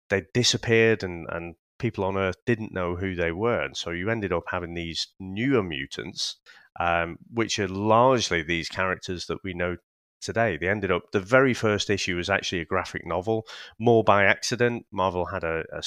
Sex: male